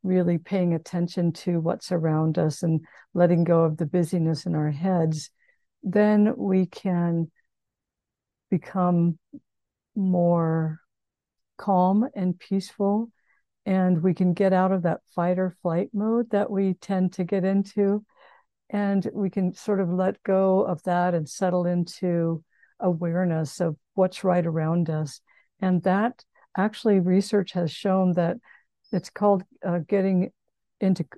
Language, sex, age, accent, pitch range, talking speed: English, female, 60-79, American, 170-200 Hz, 135 wpm